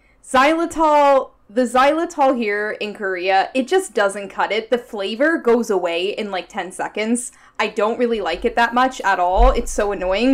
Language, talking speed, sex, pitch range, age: English, 180 wpm, female, 220-285 Hz, 10-29